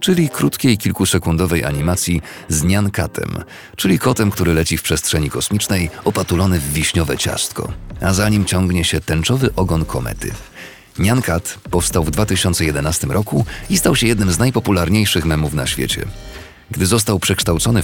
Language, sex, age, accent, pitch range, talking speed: Polish, male, 40-59, native, 80-110 Hz, 150 wpm